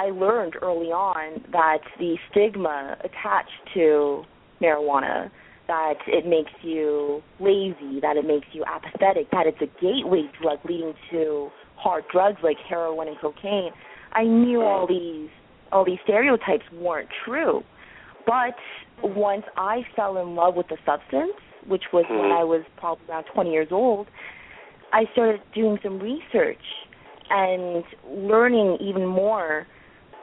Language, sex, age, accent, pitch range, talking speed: English, female, 30-49, American, 160-215 Hz, 140 wpm